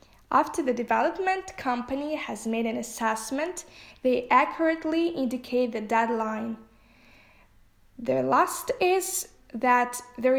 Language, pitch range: English, 235-295 Hz